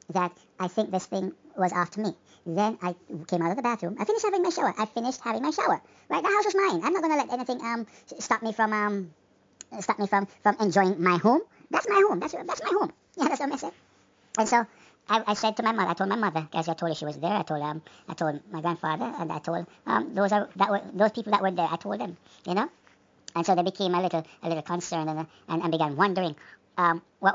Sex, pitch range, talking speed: male, 160-200 Hz, 260 wpm